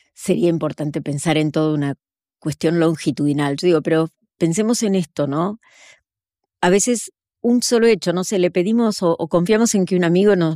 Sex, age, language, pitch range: female, 40-59, Spanish, 145-190 Hz